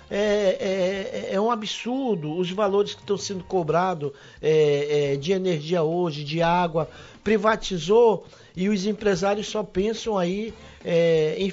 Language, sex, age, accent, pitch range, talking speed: Portuguese, male, 50-69, Brazilian, 180-225 Hz, 120 wpm